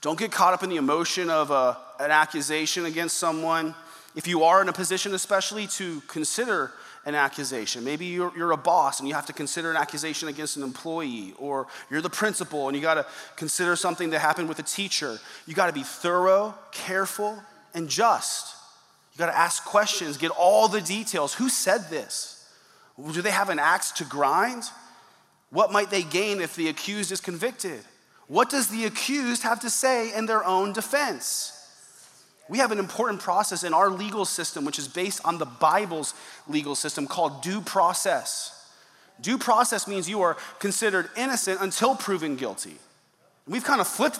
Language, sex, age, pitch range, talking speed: English, male, 30-49, 160-215 Hz, 180 wpm